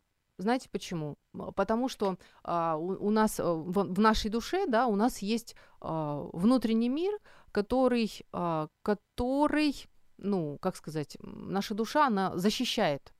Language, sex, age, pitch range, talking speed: Ukrainian, female, 30-49, 175-245 Hz, 120 wpm